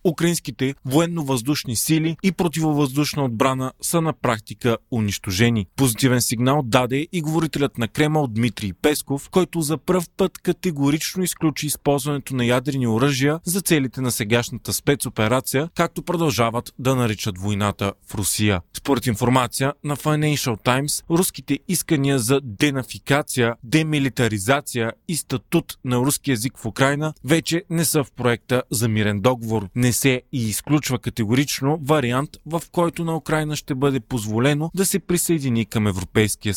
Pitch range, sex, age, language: 120-155 Hz, male, 30-49, Bulgarian